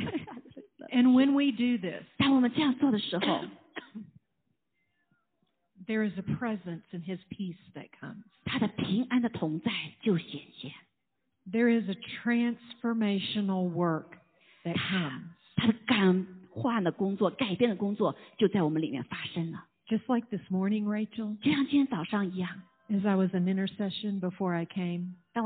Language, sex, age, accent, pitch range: Chinese, female, 50-69, American, 175-230 Hz